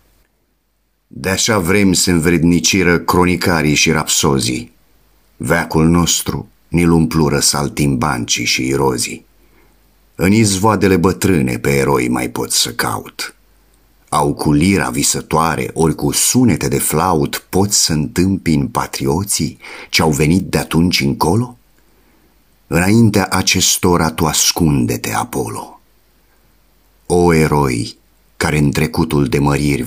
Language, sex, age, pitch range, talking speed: Romanian, male, 50-69, 70-90 Hz, 105 wpm